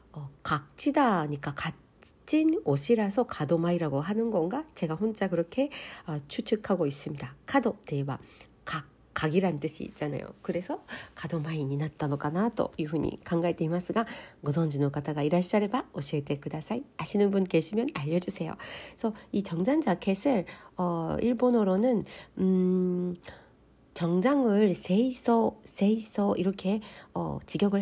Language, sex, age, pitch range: Korean, female, 40-59, 150-220 Hz